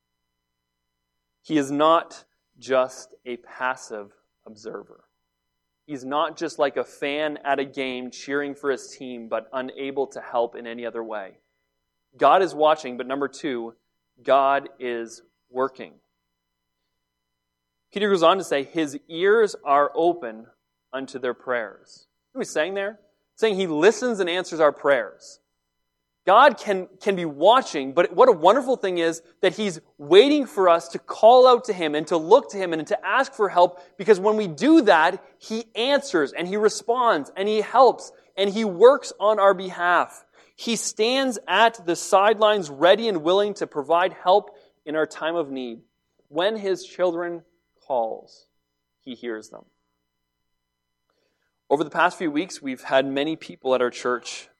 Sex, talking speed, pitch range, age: male, 165 wpm, 120-200 Hz, 30-49